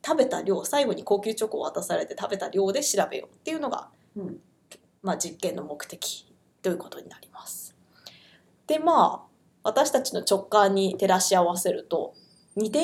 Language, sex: Japanese, female